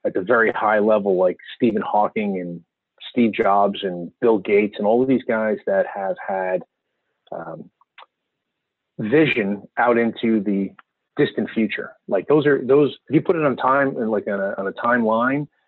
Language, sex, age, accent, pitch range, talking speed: English, male, 30-49, American, 105-155 Hz, 175 wpm